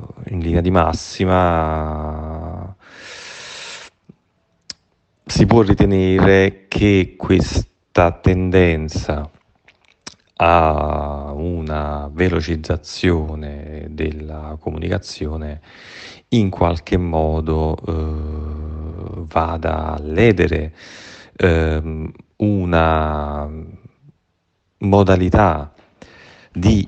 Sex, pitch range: male, 75-90 Hz